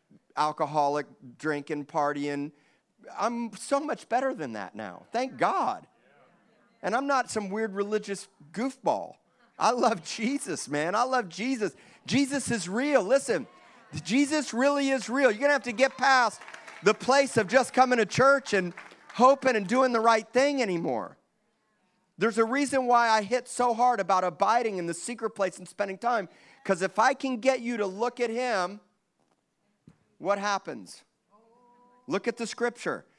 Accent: American